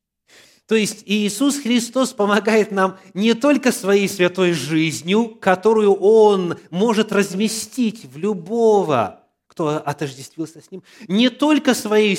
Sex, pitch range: male, 135-220 Hz